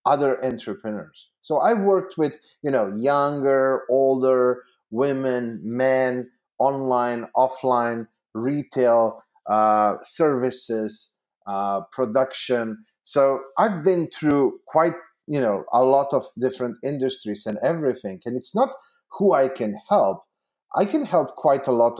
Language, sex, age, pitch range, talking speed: English, male, 30-49, 120-170 Hz, 125 wpm